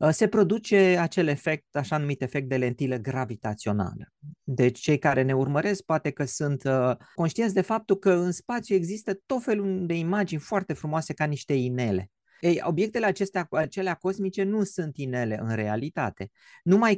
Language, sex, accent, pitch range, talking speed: Romanian, male, native, 130-195 Hz, 160 wpm